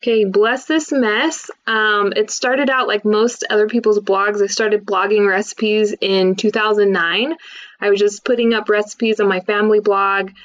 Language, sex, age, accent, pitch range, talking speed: English, female, 20-39, American, 190-235 Hz, 165 wpm